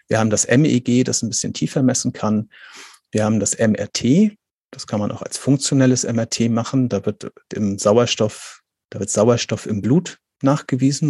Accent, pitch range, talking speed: German, 105-130 Hz, 170 wpm